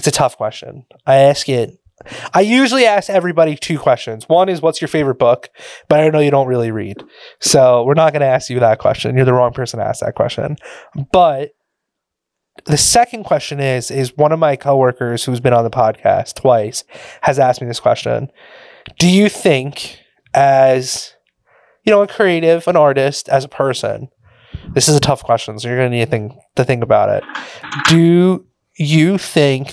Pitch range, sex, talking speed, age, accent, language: 130-165 Hz, male, 190 wpm, 20-39, American, English